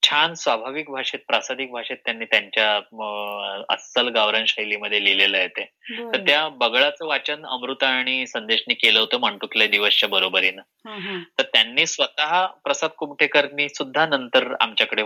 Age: 20-39